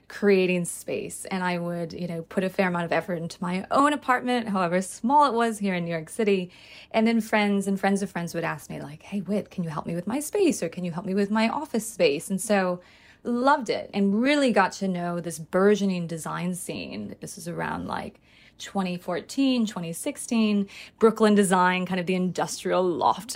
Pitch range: 180-220 Hz